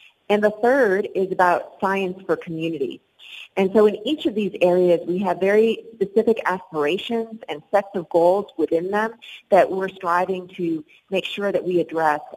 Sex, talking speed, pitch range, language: female, 170 wpm, 165-200 Hz, English